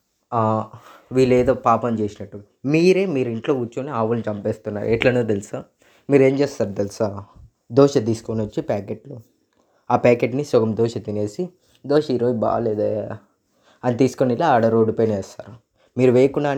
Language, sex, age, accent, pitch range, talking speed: Telugu, female, 20-39, native, 110-135 Hz, 125 wpm